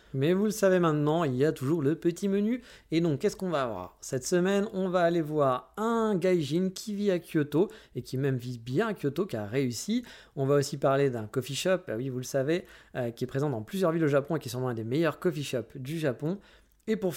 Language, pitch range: French, 130-175 Hz